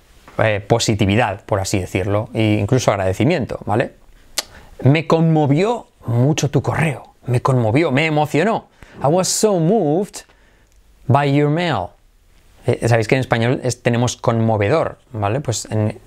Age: 20-39